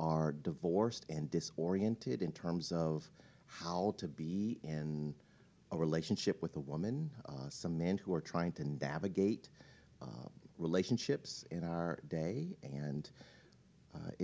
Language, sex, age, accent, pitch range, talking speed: English, male, 50-69, American, 80-110 Hz, 130 wpm